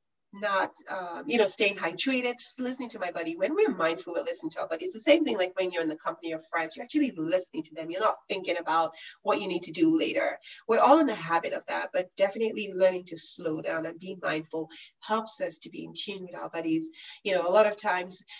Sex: female